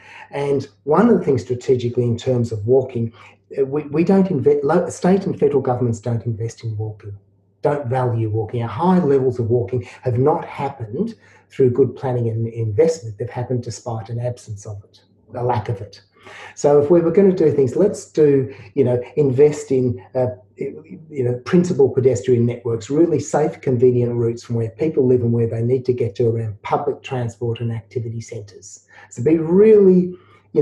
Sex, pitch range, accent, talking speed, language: male, 115-135 Hz, Australian, 185 wpm, English